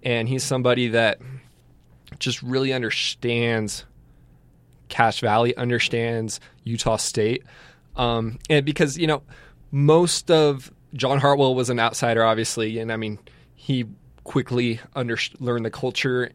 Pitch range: 115-130 Hz